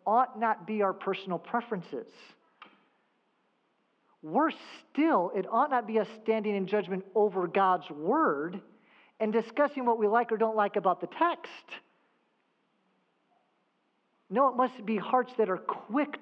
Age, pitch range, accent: 50-69, 155-220 Hz, American